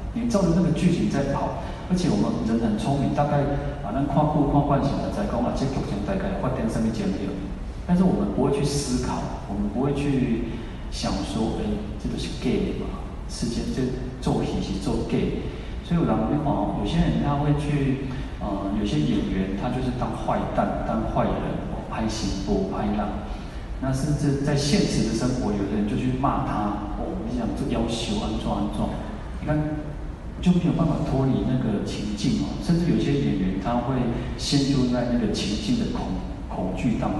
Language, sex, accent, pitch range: Chinese, male, native, 105-150 Hz